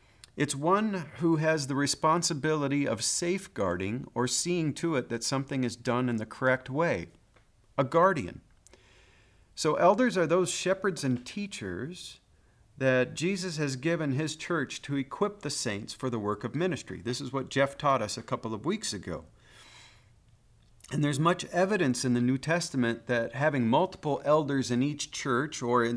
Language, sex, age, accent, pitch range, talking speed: English, male, 50-69, American, 115-150 Hz, 165 wpm